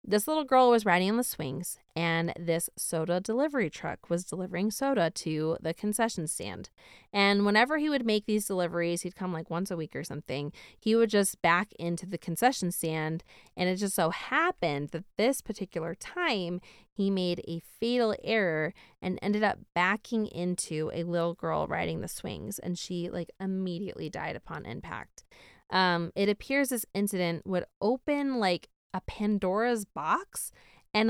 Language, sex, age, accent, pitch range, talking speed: English, female, 20-39, American, 170-220 Hz, 165 wpm